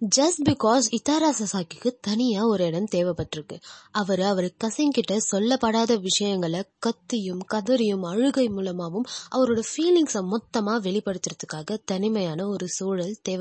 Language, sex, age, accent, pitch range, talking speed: Tamil, female, 20-39, native, 180-240 Hz, 45 wpm